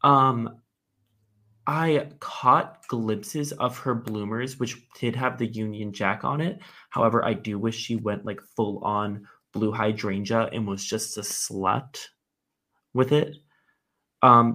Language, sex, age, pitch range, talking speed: English, male, 20-39, 105-130 Hz, 135 wpm